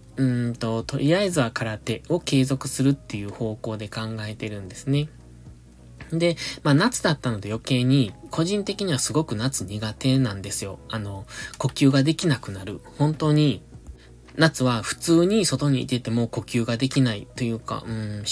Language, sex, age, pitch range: Japanese, male, 20-39, 110-145 Hz